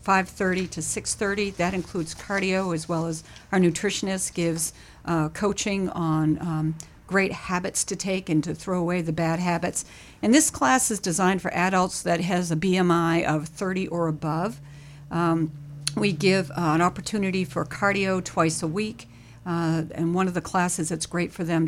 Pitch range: 160-185 Hz